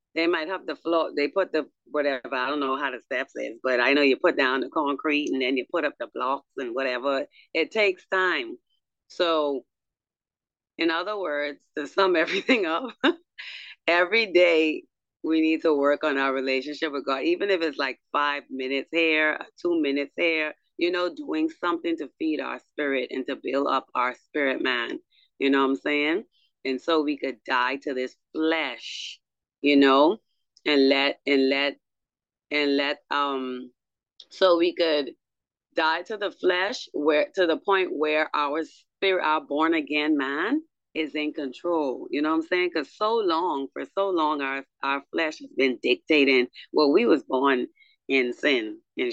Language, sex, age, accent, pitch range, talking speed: English, female, 30-49, American, 140-185 Hz, 180 wpm